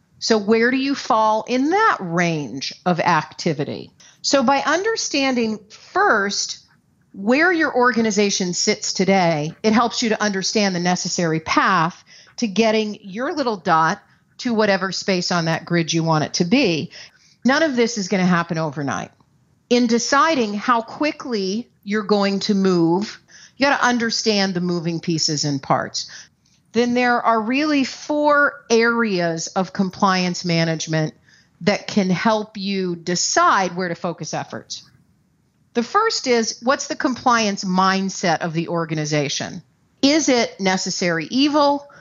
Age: 50-69